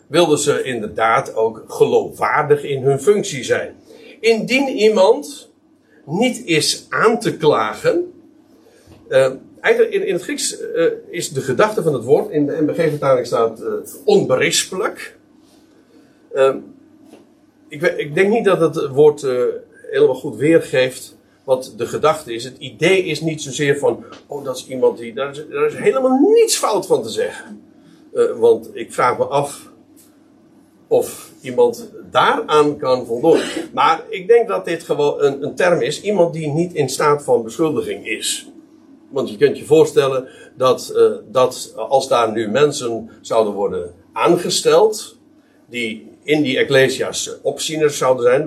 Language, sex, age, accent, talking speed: Dutch, male, 50-69, Dutch, 155 wpm